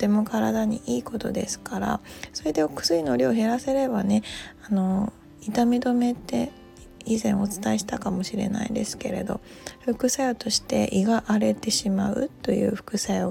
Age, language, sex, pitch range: 20-39, Japanese, female, 205-250 Hz